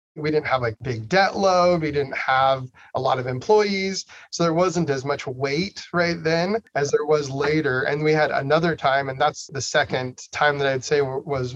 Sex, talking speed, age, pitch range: male, 210 wpm, 30-49, 130-150 Hz